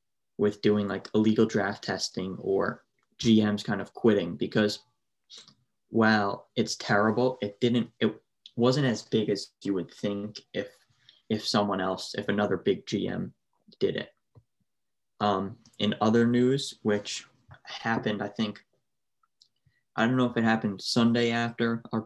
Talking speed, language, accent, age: 140 wpm, English, American, 20-39